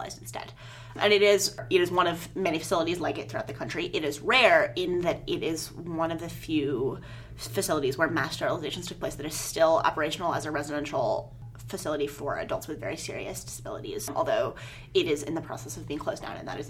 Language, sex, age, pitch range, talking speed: English, female, 20-39, 165-235 Hz, 210 wpm